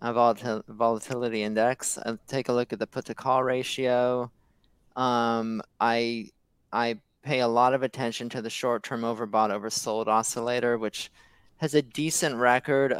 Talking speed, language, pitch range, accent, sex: 150 wpm, English, 115-135 Hz, American, male